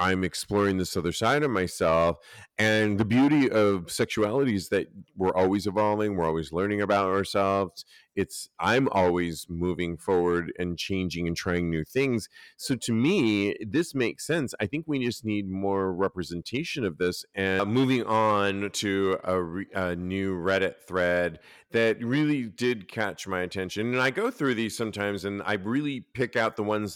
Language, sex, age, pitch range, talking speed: English, male, 40-59, 90-115 Hz, 170 wpm